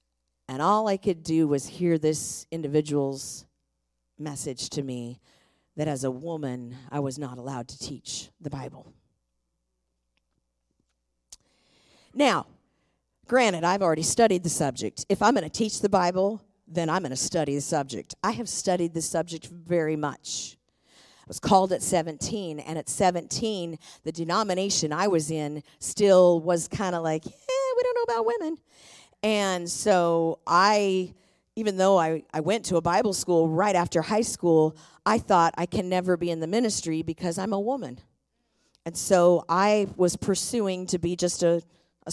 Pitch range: 155-205 Hz